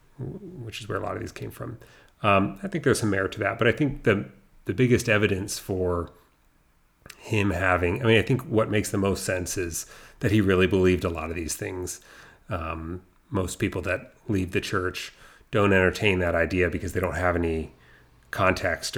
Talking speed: 200 wpm